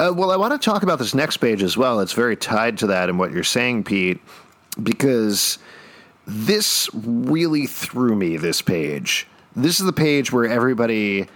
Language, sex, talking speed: English, male, 185 wpm